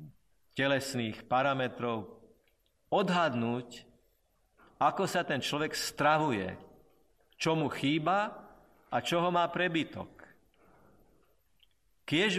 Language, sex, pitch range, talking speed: Slovak, male, 120-155 Hz, 80 wpm